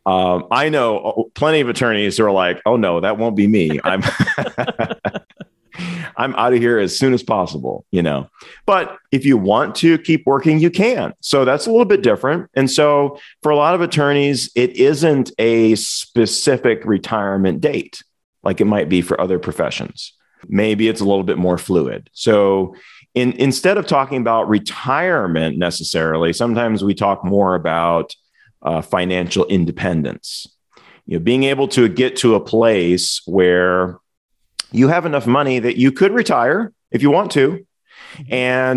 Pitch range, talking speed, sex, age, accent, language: 100-140 Hz, 165 wpm, male, 40-59, American, English